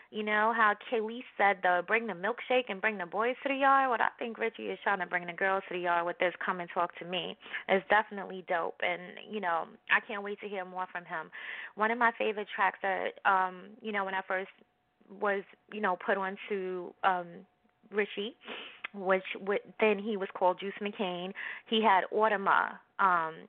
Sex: female